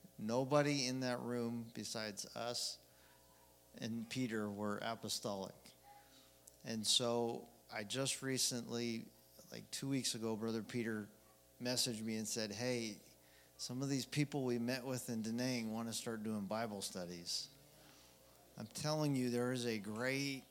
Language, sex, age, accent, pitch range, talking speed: English, male, 50-69, American, 105-130 Hz, 140 wpm